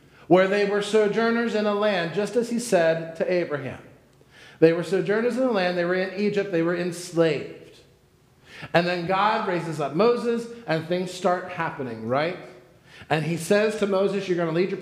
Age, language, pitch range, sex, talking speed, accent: 40-59, English, 155-205 Hz, male, 195 wpm, American